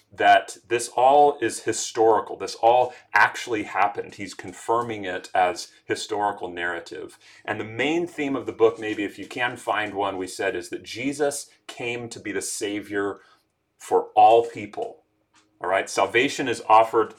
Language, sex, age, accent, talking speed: English, male, 30-49, American, 160 wpm